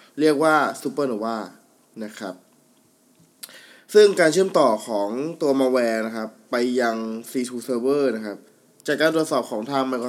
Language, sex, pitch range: Thai, male, 115-140 Hz